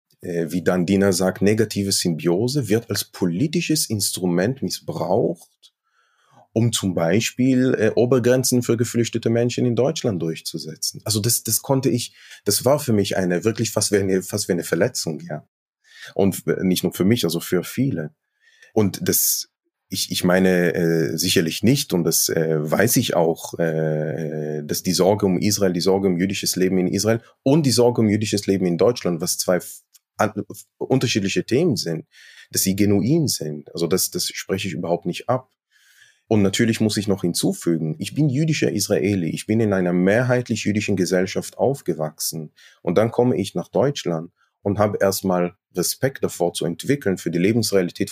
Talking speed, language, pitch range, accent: 170 wpm, German, 90-115 Hz, German